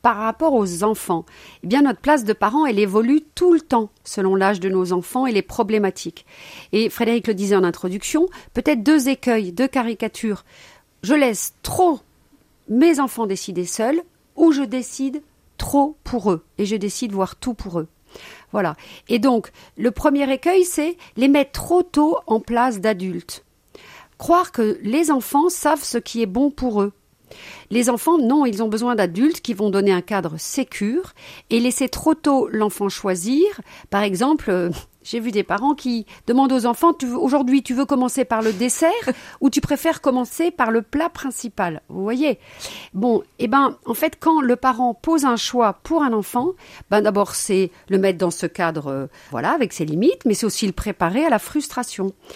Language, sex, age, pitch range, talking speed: French, female, 50-69, 205-275 Hz, 185 wpm